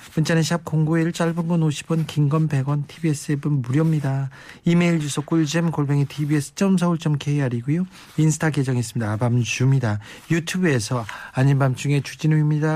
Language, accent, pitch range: Korean, native, 125-155 Hz